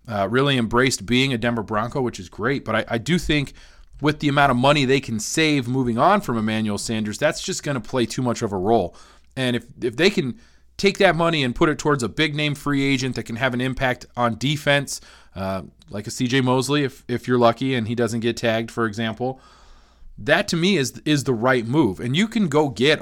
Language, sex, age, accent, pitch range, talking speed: English, male, 40-59, American, 110-140 Hz, 235 wpm